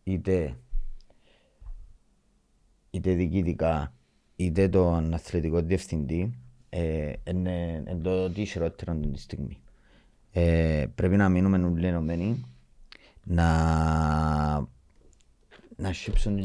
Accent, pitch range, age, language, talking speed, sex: Spanish, 85-110 Hz, 30-49, Greek, 70 wpm, male